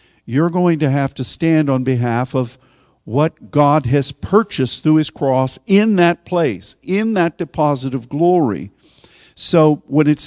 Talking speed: 160 wpm